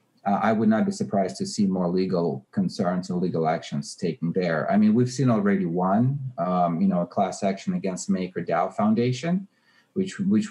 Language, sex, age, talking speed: English, male, 40-59, 185 wpm